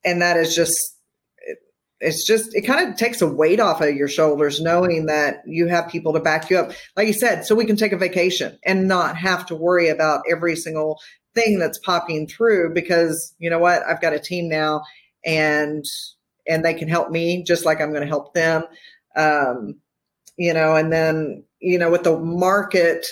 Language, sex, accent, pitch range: English, female, American, 150-175 Hz